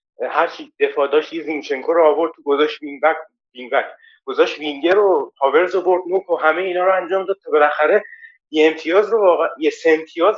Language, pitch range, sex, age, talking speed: Persian, 150-225 Hz, male, 30-49, 175 wpm